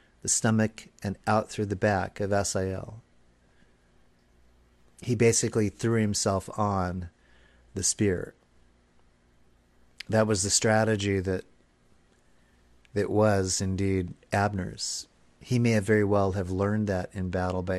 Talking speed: 120 wpm